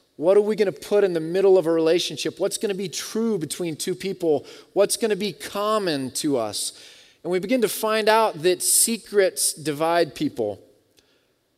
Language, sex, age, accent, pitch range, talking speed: English, male, 30-49, American, 160-190 Hz, 190 wpm